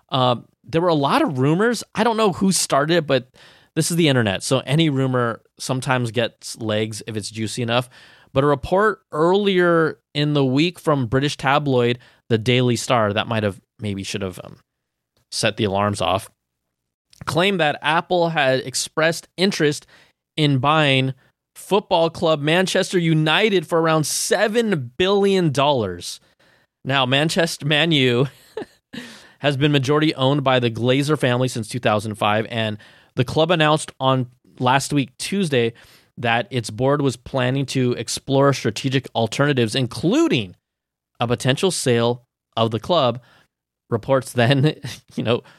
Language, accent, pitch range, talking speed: English, American, 120-155 Hz, 145 wpm